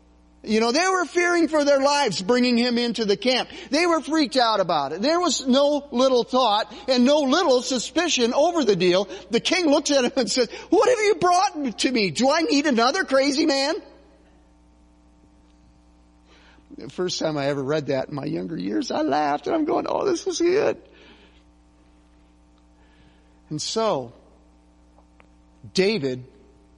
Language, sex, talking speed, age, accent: English, male, 165 wpm, 40-59, American